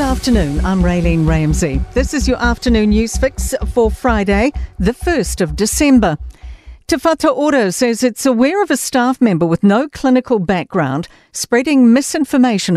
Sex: female